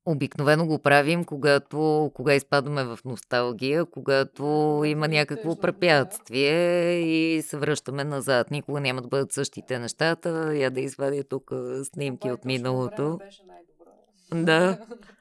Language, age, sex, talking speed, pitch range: Bulgarian, 20-39, female, 120 wpm, 125-145 Hz